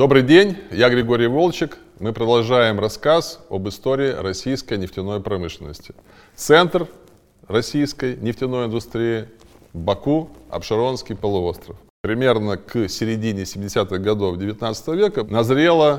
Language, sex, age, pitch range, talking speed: Russian, male, 20-39, 100-135 Hz, 105 wpm